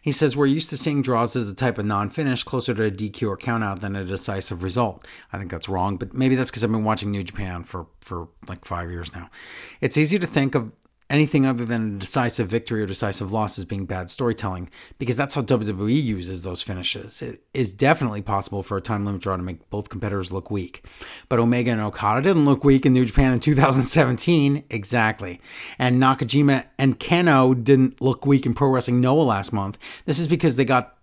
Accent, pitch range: American, 105-135 Hz